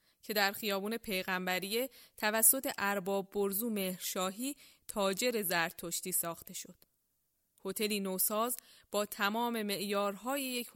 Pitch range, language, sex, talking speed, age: 185-230 Hz, Persian, female, 100 wpm, 20-39